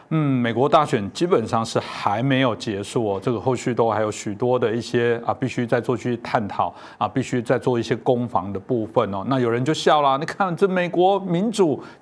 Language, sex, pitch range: Chinese, male, 120-150 Hz